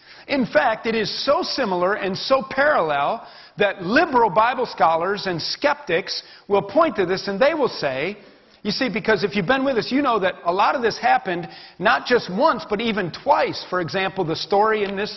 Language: English